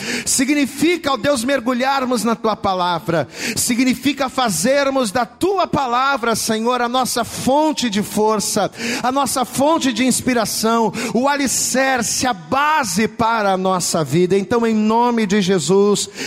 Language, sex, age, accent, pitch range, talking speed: Portuguese, male, 40-59, Brazilian, 215-270 Hz, 135 wpm